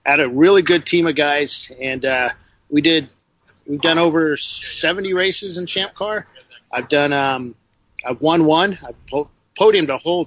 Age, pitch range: 40-59, 125-160 Hz